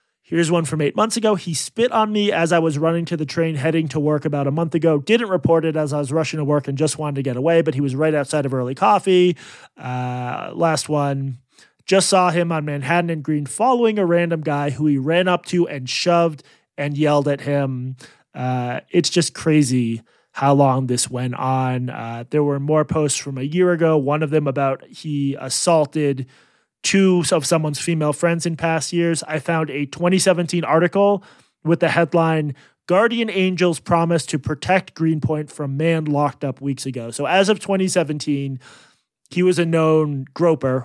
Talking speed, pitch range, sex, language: 195 wpm, 140-170 Hz, male, English